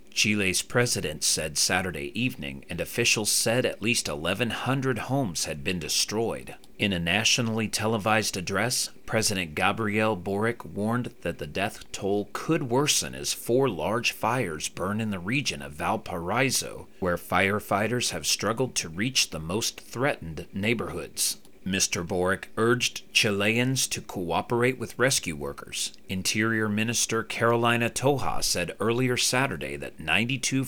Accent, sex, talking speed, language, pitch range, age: American, male, 135 wpm, English, 90-120 Hz, 40-59